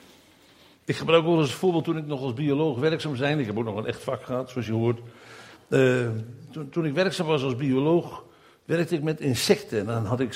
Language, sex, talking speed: Dutch, male, 225 wpm